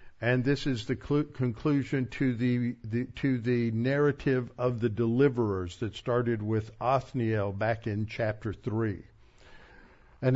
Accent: American